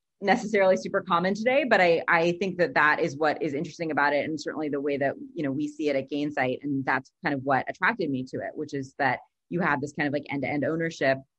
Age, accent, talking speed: 30-49, American, 255 wpm